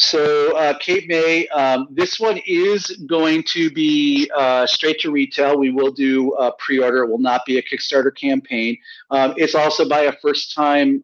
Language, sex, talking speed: English, male, 185 wpm